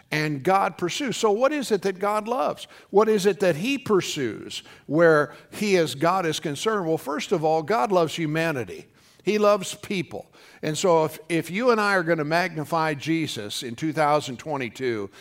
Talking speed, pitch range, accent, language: 180 wpm, 150-195 Hz, American, English